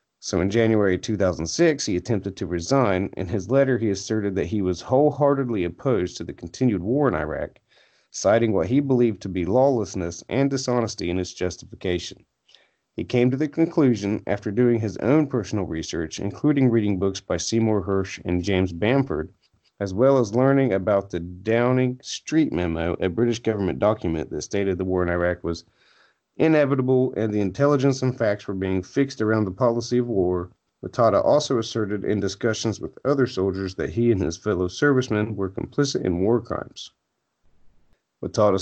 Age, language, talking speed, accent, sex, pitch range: 40-59, English, 170 wpm, American, male, 95-125 Hz